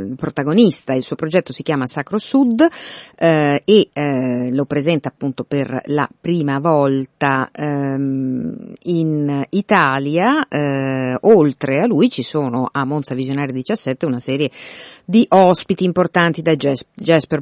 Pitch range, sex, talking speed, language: 130-165 Hz, female, 130 wpm, Italian